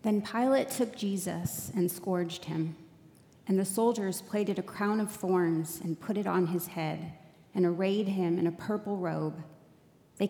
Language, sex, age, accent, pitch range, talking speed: English, female, 30-49, American, 165-210 Hz, 170 wpm